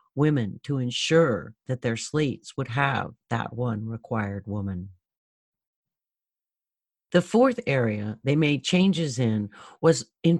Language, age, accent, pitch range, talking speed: English, 50-69, American, 120-170 Hz, 120 wpm